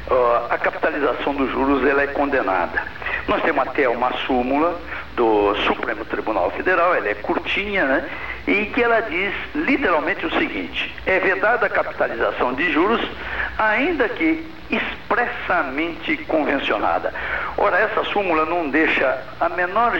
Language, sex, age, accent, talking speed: Portuguese, male, 60-79, Brazilian, 135 wpm